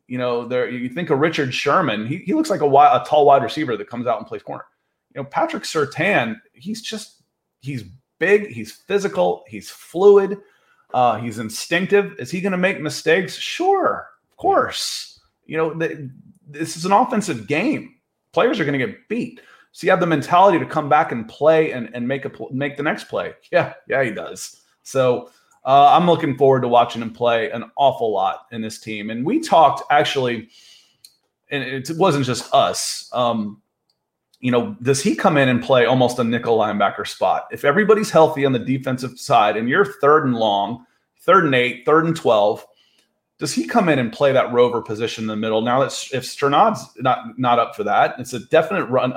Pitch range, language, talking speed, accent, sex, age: 120-160 Hz, English, 200 wpm, American, male, 30-49